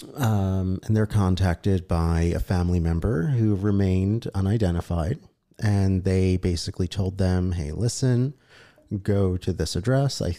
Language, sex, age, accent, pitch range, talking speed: English, male, 30-49, American, 85-110 Hz, 135 wpm